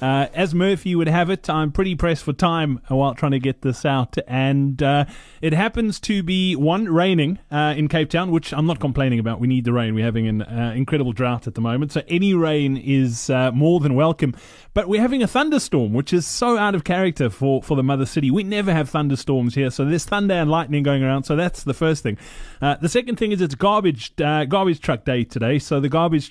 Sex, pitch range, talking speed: male, 130-175 Hz, 235 wpm